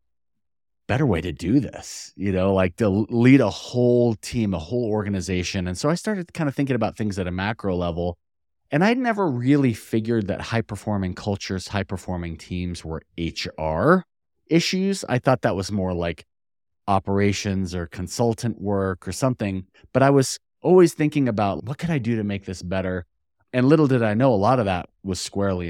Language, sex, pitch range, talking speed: English, male, 90-120 Hz, 185 wpm